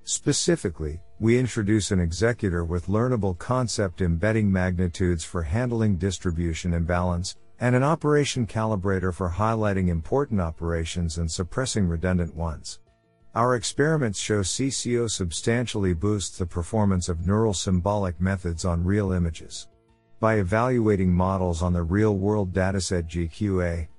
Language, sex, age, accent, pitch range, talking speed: English, male, 50-69, American, 85-110 Hz, 125 wpm